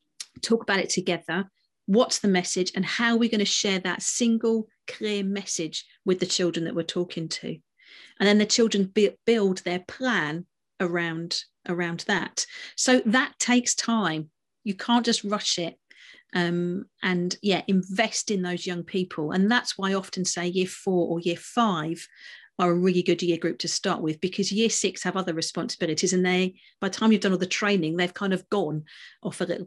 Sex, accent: female, British